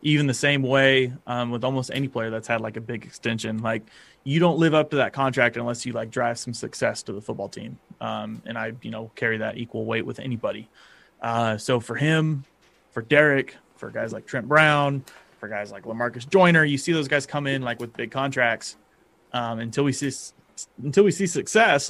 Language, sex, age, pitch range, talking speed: English, male, 30-49, 120-150 Hz, 215 wpm